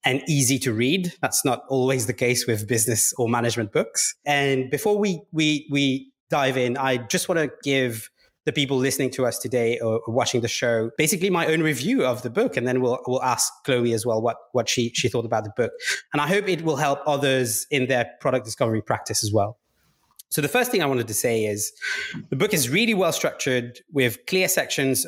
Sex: male